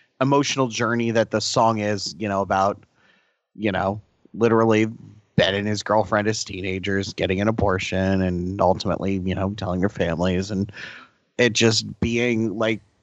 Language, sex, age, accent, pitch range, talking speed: English, male, 30-49, American, 105-130 Hz, 150 wpm